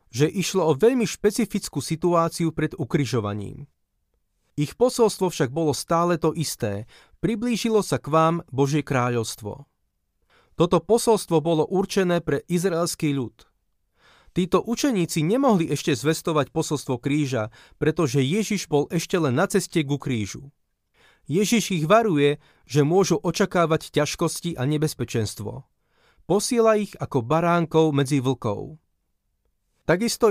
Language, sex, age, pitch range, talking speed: Slovak, male, 30-49, 135-175 Hz, 120 wpm